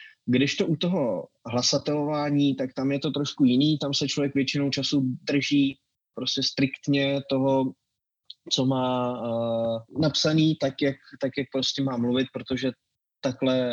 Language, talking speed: Czech, 135 wpm